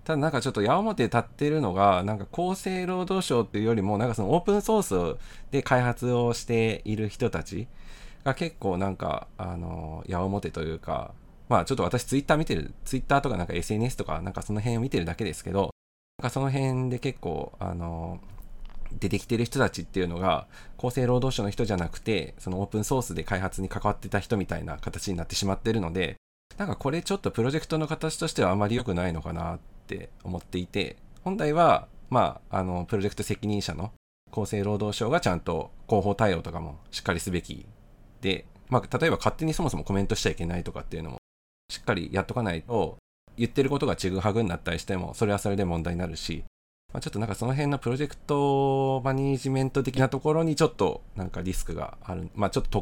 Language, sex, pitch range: Japanese, male, 90-130 Hz